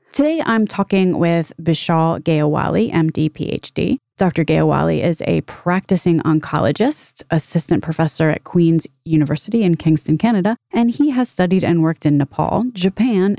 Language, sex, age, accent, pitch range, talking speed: English, female, 20-39, American, 155-210 Hz, 140 wpm